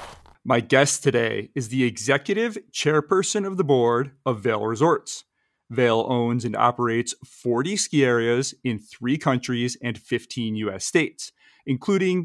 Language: English